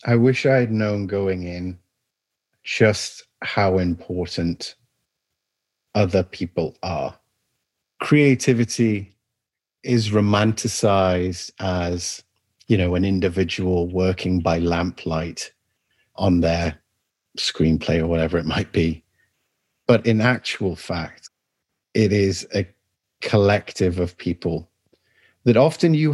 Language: English